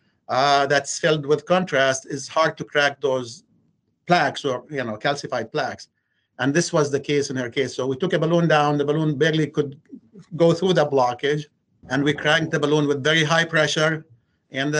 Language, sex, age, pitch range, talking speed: English, male, 50-69, 135-165 Hz, 195 wpm